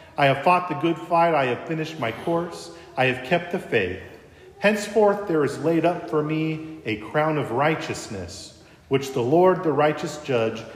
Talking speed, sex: 185 wpm, male